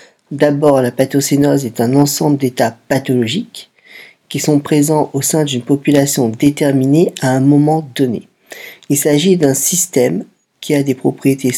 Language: French